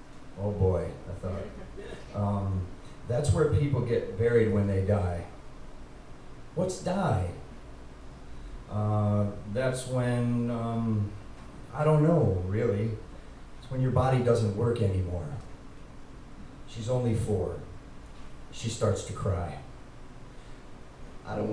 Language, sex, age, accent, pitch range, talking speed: English, male, 40-59, American, 90-130 Hz, 110 wpm